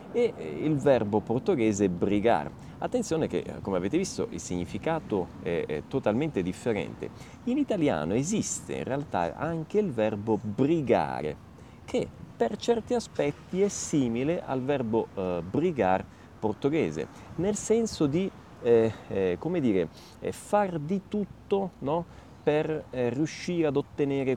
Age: 30-49